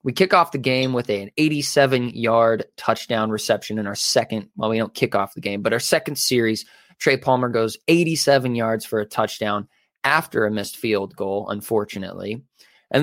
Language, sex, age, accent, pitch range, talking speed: English, male, 20-39, American, 105-135 Hz, 185 wpm